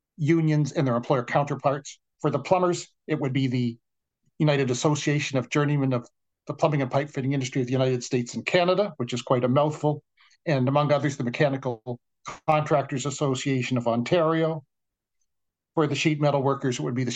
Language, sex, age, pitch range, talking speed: English, male, 50-69, 130-155 Hz, 180 wpm